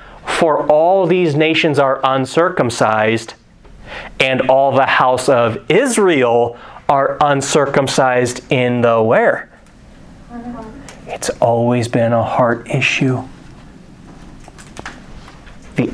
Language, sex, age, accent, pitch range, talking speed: English, male, 30-49, American, 135-165 Hz, 90 wpm